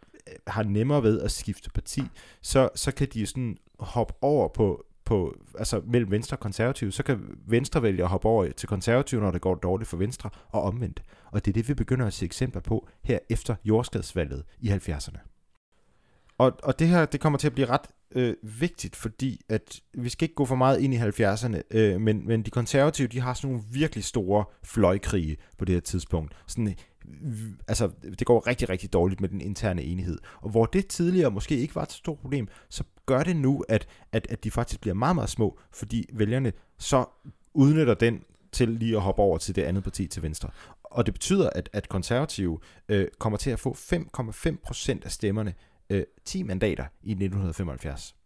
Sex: male